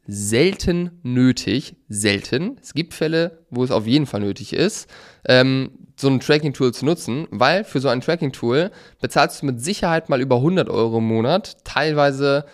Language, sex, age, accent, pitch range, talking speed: German, male, 20-39, German, 115-145 Hz, 170 wpm